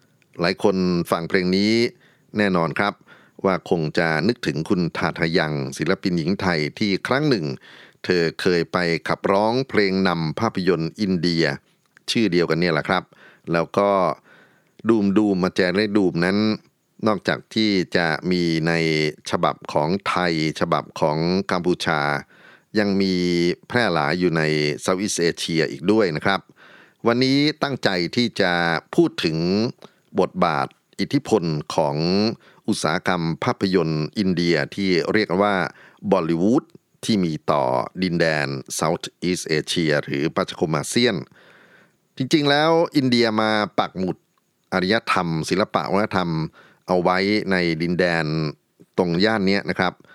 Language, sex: Thai, male